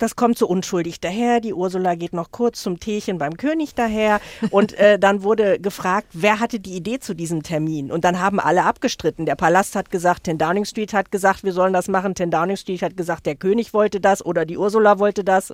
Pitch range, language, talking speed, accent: 165-205 Hz, German, 230 wpm, German